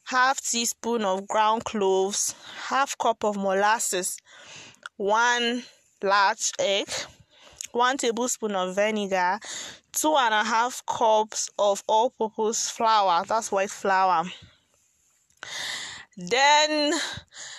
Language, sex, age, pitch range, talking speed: English, female, 20-39, 205-260 Hz, 95 wpm